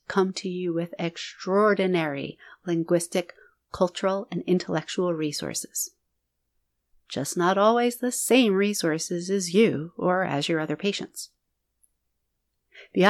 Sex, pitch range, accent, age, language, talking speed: female, 170-220 Hz, American, 30-49, English, 110 wpm